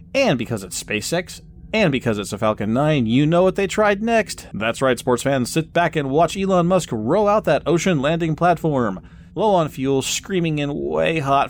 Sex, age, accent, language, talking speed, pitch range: male, 30-49, American, English, 205 wpm, 105-145 Hz